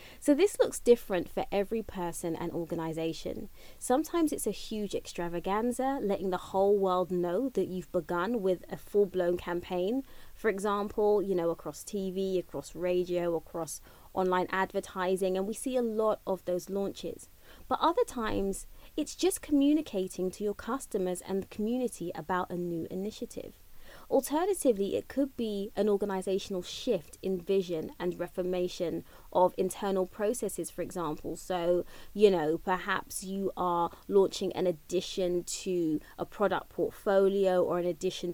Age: 20-39